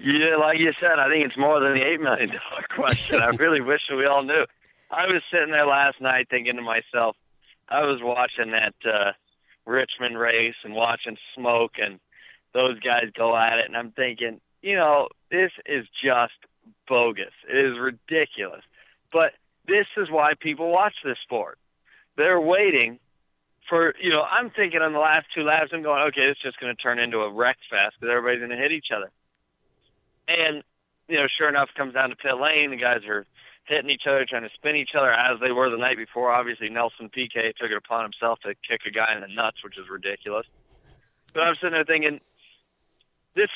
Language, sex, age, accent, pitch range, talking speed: English, male, 40-59, American, 120-155 Hz, 200 wpm